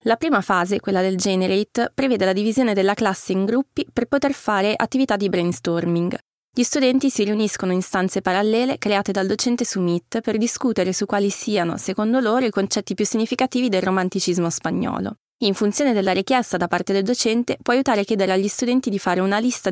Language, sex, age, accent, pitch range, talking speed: Italian, female, 20-39, native, 190-245 Hz, 190 wpm